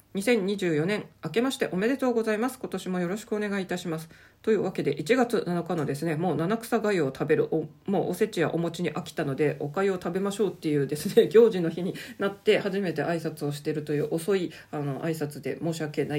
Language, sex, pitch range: Japanese, female, 155-200 Hz